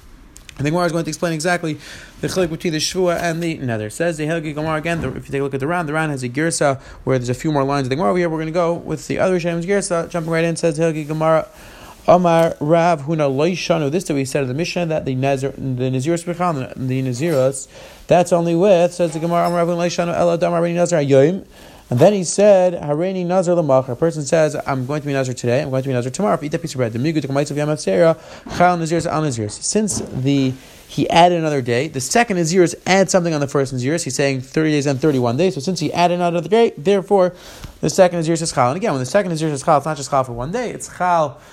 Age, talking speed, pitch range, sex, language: 30-49, 260 wpm, 135-175 Hz, male, English